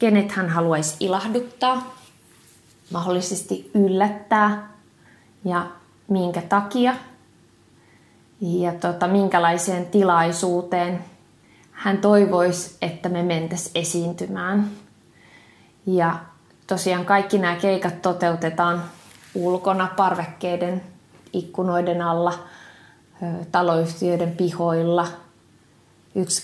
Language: English